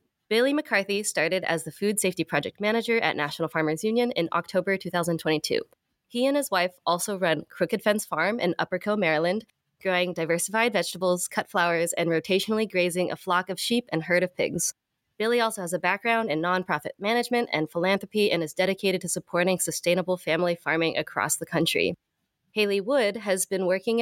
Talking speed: 175 wpm